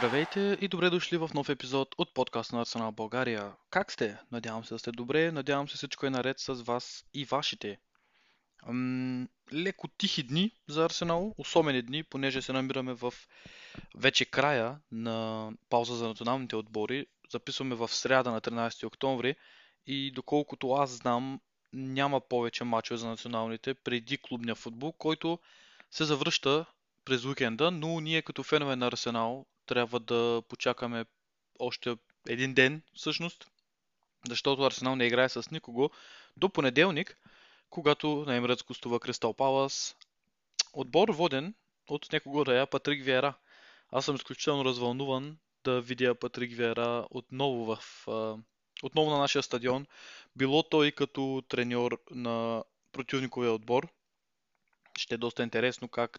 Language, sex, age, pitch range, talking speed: Bulgarian, male, 20-39, 120-140 Hz, 140 wpm